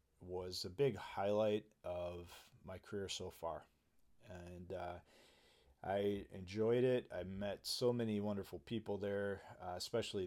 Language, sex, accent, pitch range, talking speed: English, male, American, 85-100 Hz, 135 wpm